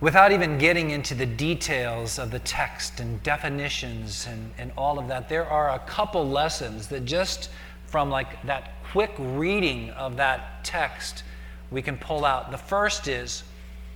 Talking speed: 165 wpm